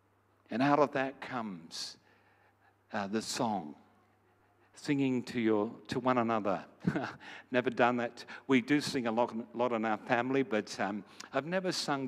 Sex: male